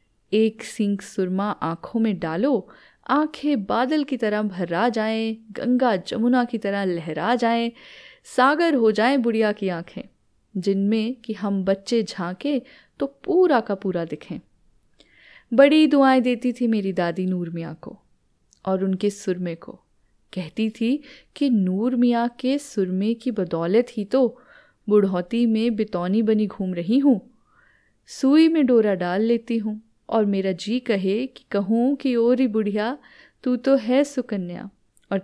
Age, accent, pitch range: 10-29, native, 195-255 Hz